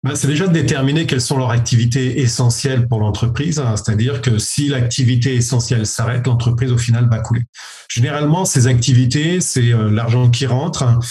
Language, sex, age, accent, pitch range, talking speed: French, male, 40-59, French, 120-140 Hz, 155 wpm